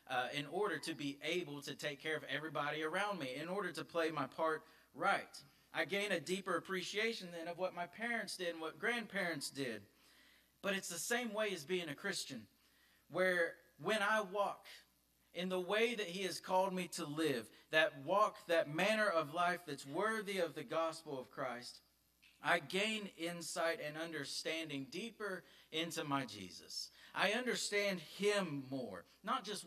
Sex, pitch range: male, 155-200 Hz